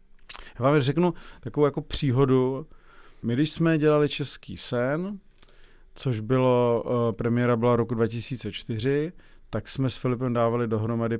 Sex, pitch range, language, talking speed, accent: male, 105-130 Hz, Czech, 130 wpm, native